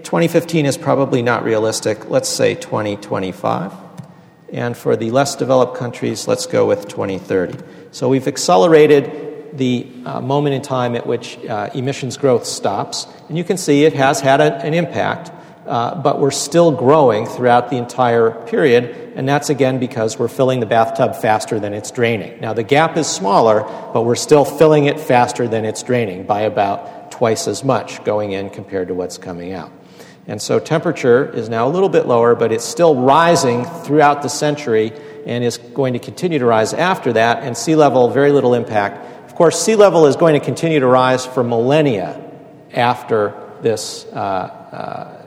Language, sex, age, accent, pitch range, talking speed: English, male, 50-69, American, 115-150 Hz, 180 wpm